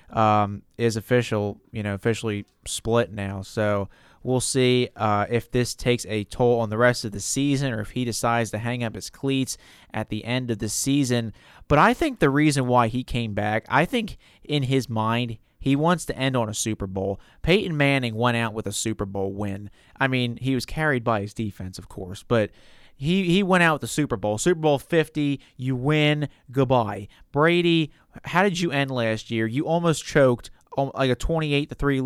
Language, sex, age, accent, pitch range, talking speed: English, male, 30-49, American, 110-135 Hz, 200 wpm